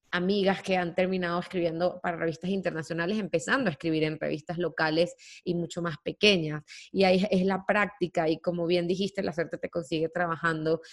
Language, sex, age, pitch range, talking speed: Spanish, female, 20-39, 170-190 Hz, 175 wpm